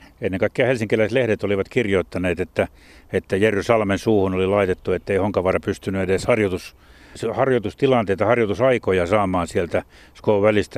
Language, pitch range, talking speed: Finnish, 100-115 Hz, 130 wpm